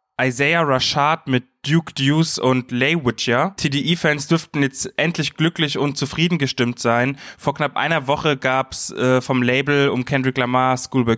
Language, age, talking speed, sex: German, 20-39, 160 wpm, male